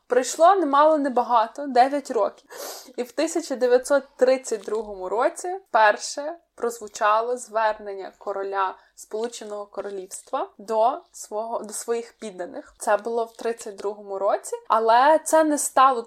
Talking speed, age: 110 wpm, 20-39